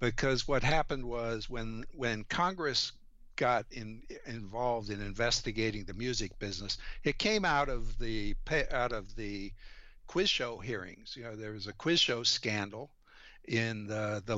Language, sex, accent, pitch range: English, male, American, 105-125 Hz